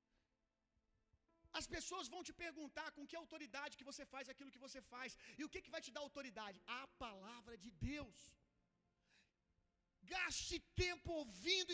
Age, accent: 40-59, Brazilian